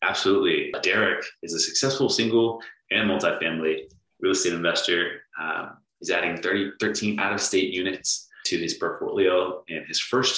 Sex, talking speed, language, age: male, 145 wpm, English, 30-49